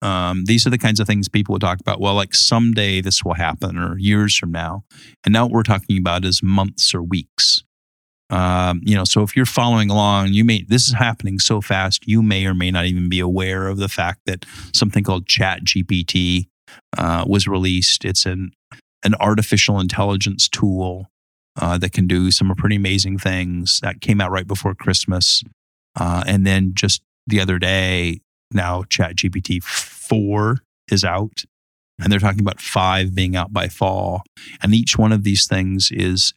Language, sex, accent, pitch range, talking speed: English, male, American, 90-105 Hz, 185 wpm